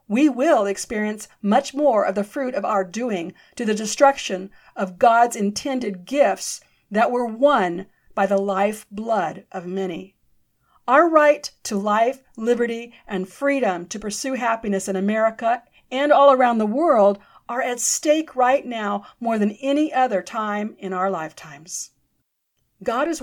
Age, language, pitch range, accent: 50-69, English, 200-275 Hz, American